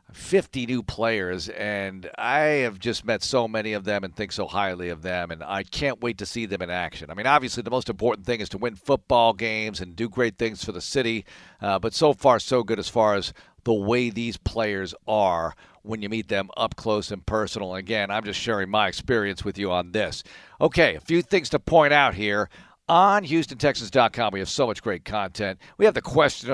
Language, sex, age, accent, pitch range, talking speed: English, male, 50-69, American, 105-130 Hz, 220 wpm